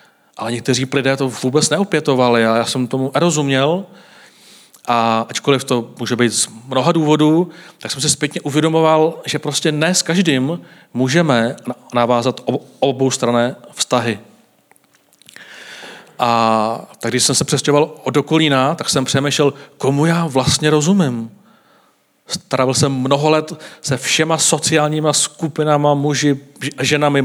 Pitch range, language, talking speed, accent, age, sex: 130-150 Hz, Czech, 130 wpm, native, 40-59, male